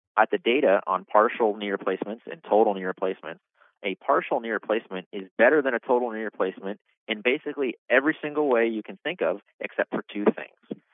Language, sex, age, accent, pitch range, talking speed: English, male, 30-49, American, 100-125 Hz, 190 wpm